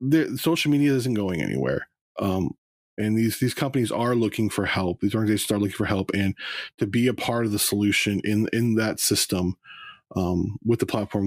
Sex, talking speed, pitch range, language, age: male, 190 wpm, 100-125 Hz, English, 20-39